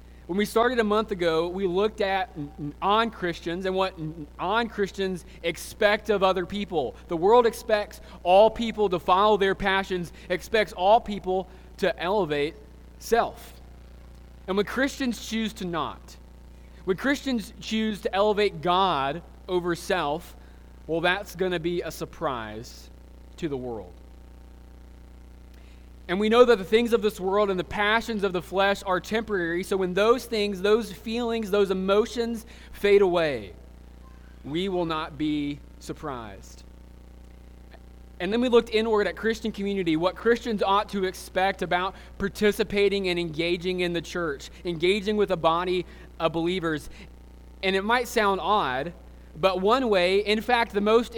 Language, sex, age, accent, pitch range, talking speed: English, male, 20-39, American, 145-210 Hz, 150 wpm